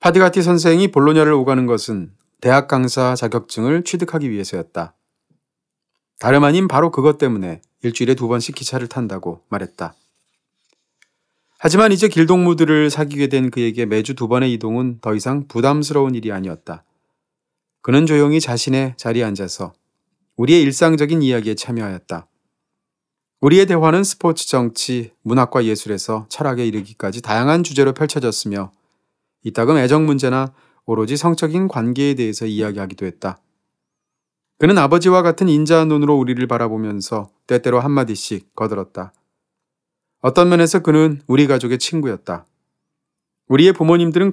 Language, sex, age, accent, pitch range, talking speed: English, male, 40-59, Korean, 115-155 Hz, 110 wpm